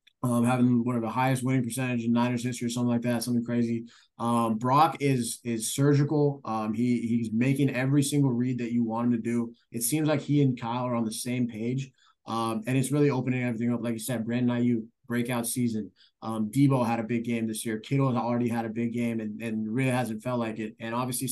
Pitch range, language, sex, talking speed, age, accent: 115-130 Hz, English, male, 240 wpm, 20-39, American